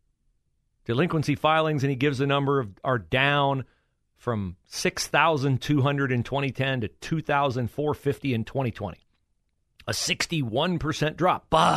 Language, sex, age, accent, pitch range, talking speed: English, male, 40-59, American, 105-165 Hz, 80 wpm